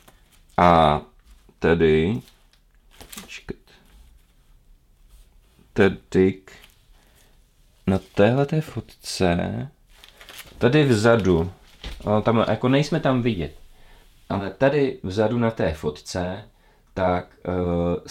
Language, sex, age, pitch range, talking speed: Czech, male, 30-49, 80-95 Hz, 75 wpm